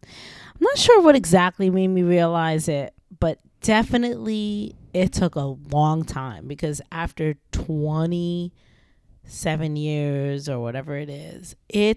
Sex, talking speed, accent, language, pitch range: female, 125 wpm, American, English, 155-195 Hz